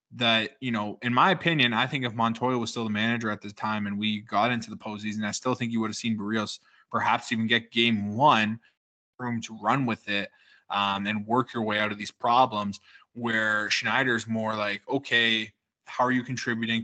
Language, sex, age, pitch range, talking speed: English, male, 20-39, 105-120 Hz, 215 wpm